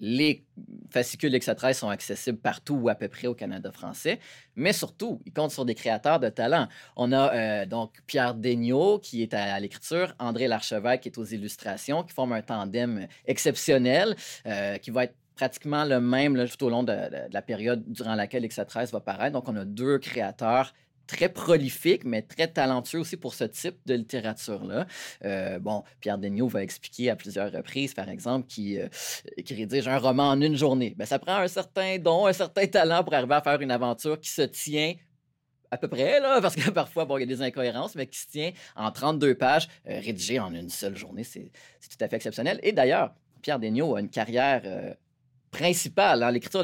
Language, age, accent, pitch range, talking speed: French, 30-49, Canadian, 120-155 Hz, 210 wpm